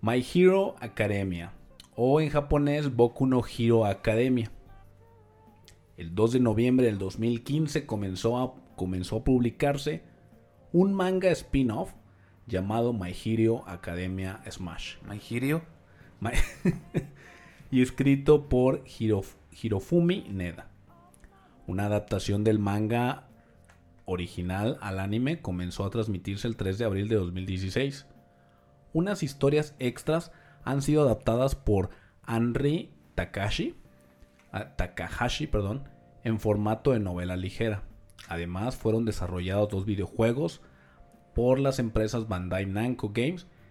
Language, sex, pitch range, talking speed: Spanish, male, 95-130 Hz, 105 wpm